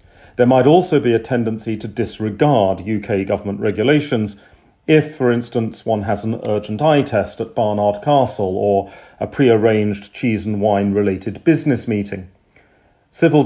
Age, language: 40-59, English